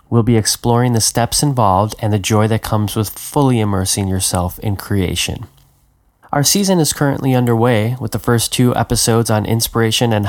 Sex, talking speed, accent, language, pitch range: male, 175 wpm, American, English, 105-125 Hz